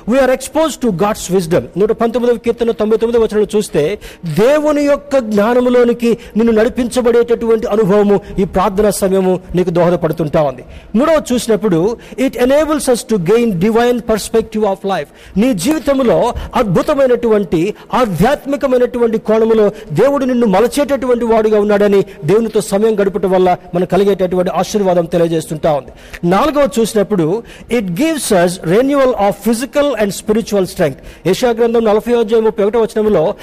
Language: Telugu